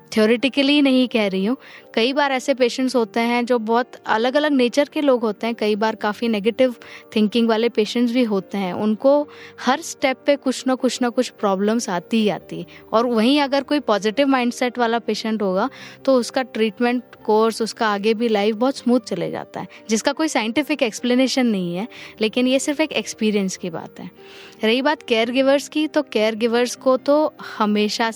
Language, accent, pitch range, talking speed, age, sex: Hindi, native, 210-255 Hz, 190 wpm, 20-39, female